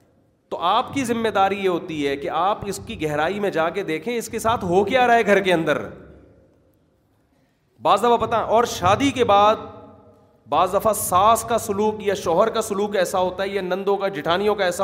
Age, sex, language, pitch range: 30-49, male, Urdu, 165-210 Hz